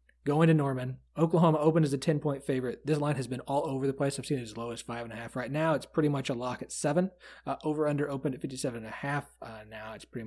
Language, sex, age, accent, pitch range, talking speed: English, male, 30-49, American, 115-145 Hz, 245 wpm